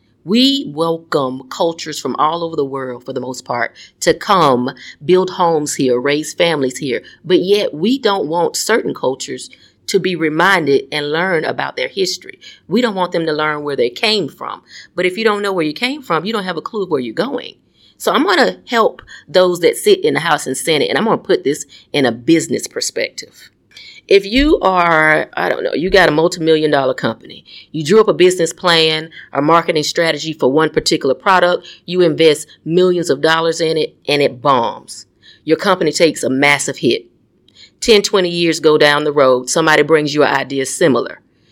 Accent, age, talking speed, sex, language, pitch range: American, 30-49, 200 wpm, female, English, 145-185 Hz